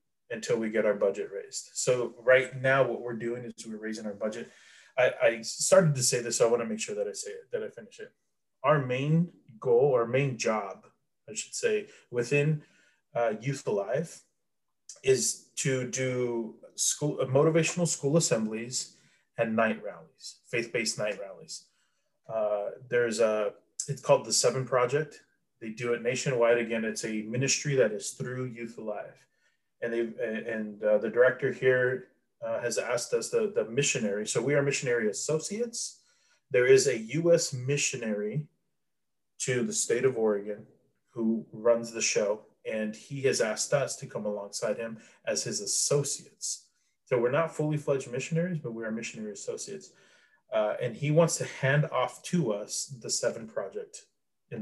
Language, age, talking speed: English, 20-39, 165 wpm